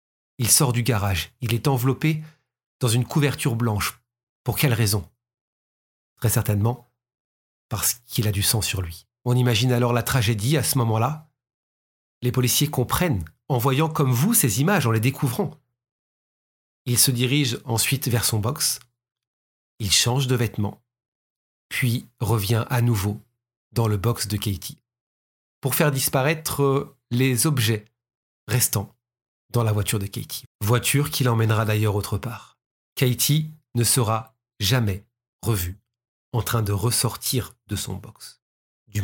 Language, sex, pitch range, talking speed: French, male, 105-130 Hz, 145 wpm